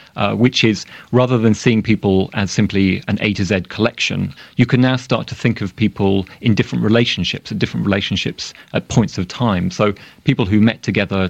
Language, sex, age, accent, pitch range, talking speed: English, male, 30-49, British, 95-115 Hz, 195 wpm